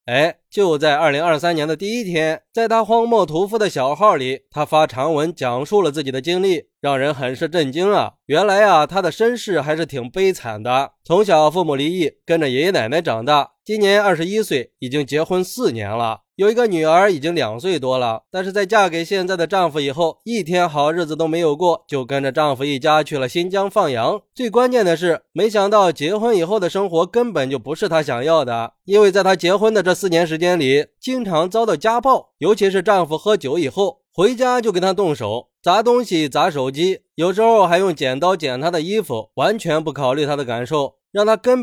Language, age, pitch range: Chinese, 20-39, 150-205 Hz